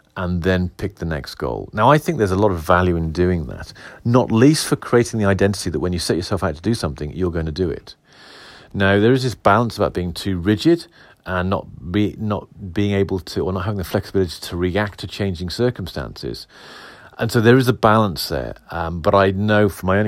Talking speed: 230 wpm